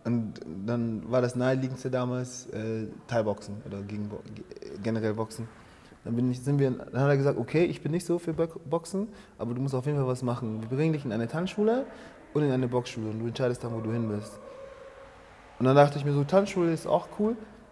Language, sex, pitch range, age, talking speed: German, male, 120-150 Hz, 20-39, 225 wpm